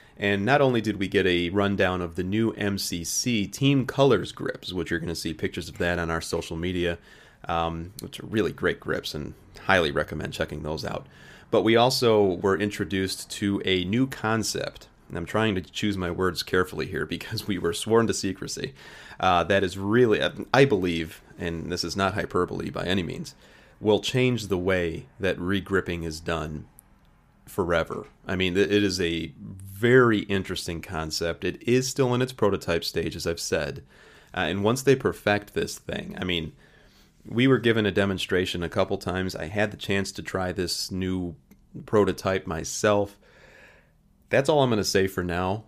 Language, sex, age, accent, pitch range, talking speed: English, male, 30-49, American, 85-105 Hz, 185 wpm